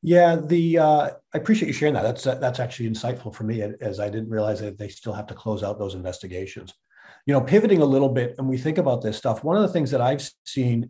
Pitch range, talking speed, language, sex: 120-145 Hz, 260 wpm, English, male